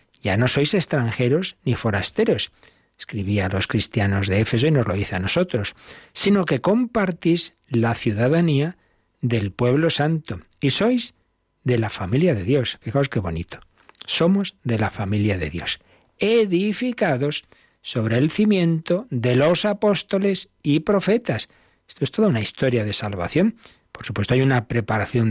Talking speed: 145 wpm